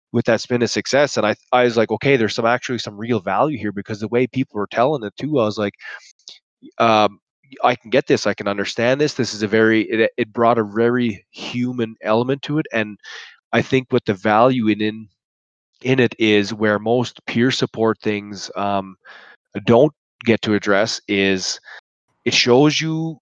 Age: 20-39